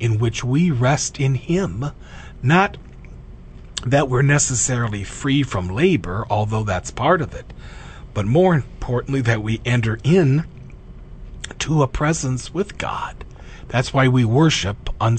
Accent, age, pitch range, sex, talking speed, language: American, 40-59, 105-130 Hz, male, 140 wpm, English